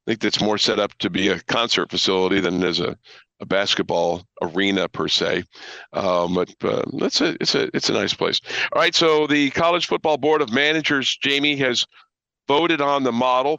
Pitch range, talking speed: 100-135 Hz, 200 wpm